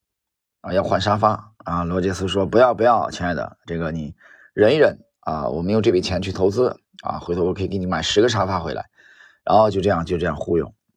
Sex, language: male, Chinese